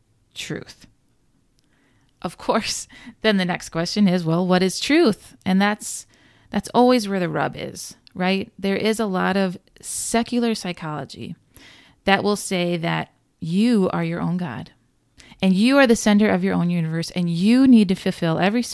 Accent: American